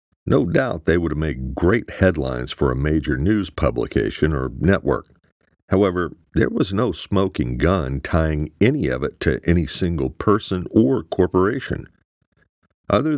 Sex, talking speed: male, 145 wpm